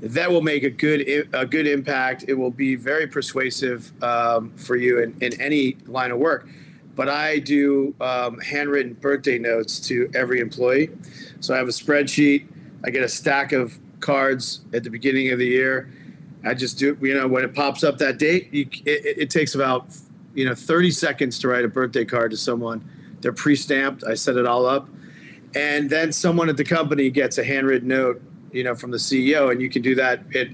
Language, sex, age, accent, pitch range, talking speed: English, male, 40-59, American, 125-145 Hz, 205 wpm